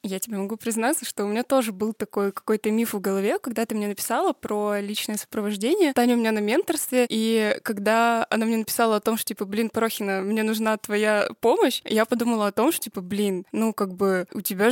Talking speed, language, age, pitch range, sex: 215 wpm, Russian, 20-39, 205-235 Hz, female